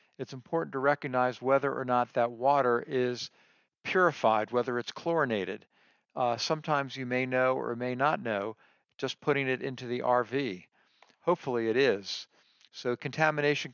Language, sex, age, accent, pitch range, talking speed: English, male, 50-69, American, 125-145 Hz, 150 wpm